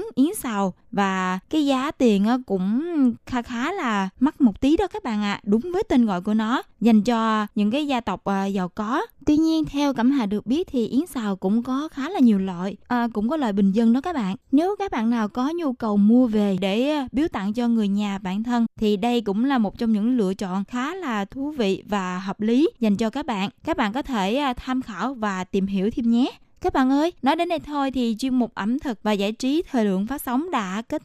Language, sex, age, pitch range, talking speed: Vietnamese, female, 20-39, 205-275 Hz, 240 wpm